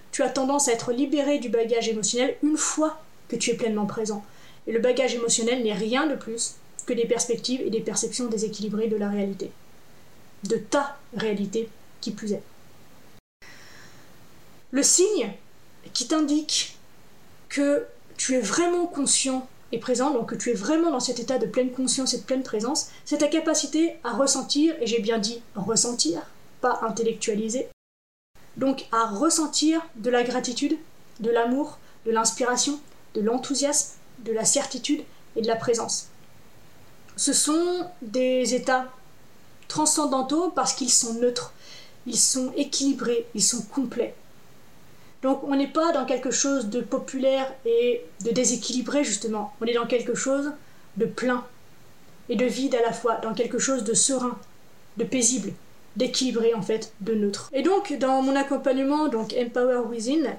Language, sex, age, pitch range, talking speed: French, female, 20-39, 230-275 Hz, 155 wpm